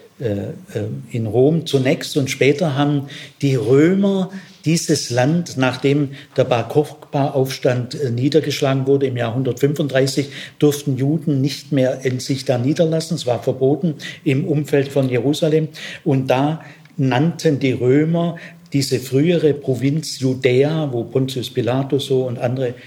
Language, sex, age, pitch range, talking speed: German, male, 50-69, 125-150 Hz, 130 wpm